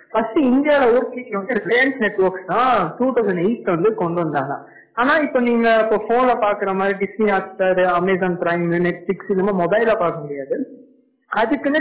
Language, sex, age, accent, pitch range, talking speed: Tamil, female, 50-69, native, 185-250 Hz, 105 wpm